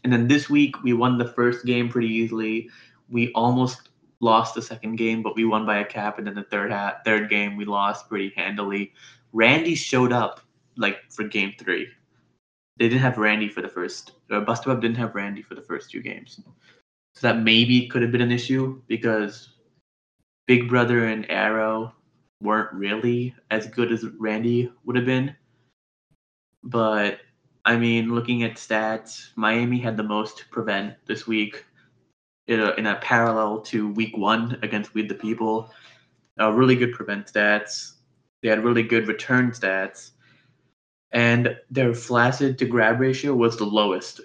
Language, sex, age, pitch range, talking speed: English, male, 20-39, 110-125 Hz, 170 wpm